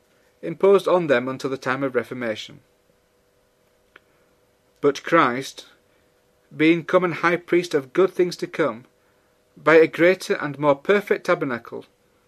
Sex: male